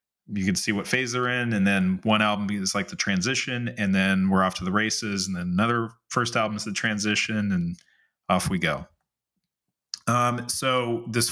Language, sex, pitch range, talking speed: English, male, 100-125 Hz, 195 wpm